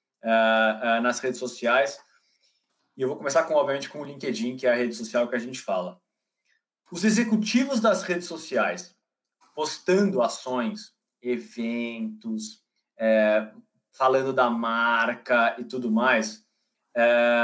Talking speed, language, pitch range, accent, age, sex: 135 wpm, Portuguese, 120-185 Hz, Brazilian, 20-39, male